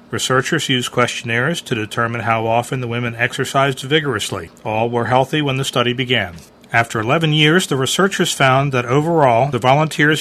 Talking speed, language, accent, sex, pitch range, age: 165 wpm, English, American, male, 120-150 Hz, 40-59